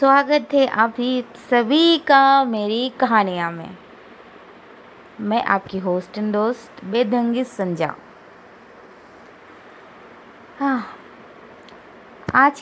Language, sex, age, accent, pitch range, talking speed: Hindi, female, 20-39, native, 205-285 Hz, 85 wpm